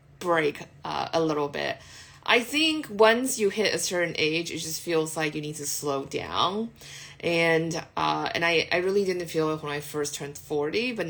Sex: female